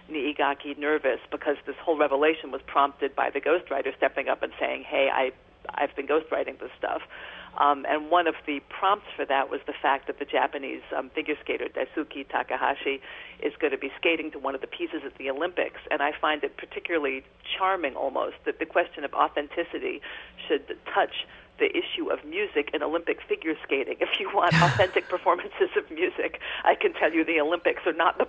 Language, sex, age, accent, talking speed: English, female, 50-69, American, 195 wpm